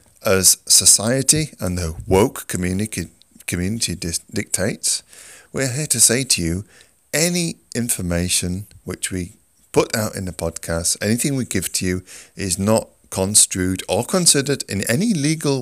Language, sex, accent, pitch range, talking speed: English, male, British, 85-115 Hz, 140 wpm